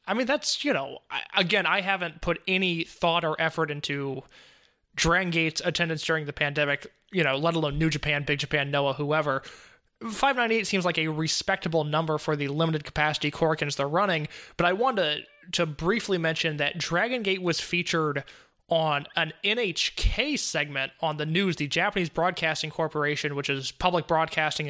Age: 20-39